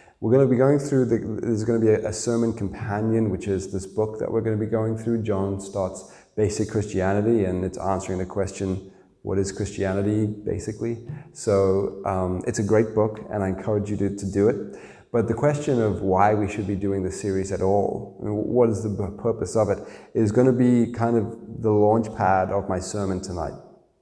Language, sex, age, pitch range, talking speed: English, male, 20-39, 100-115 Hz, 210 wpm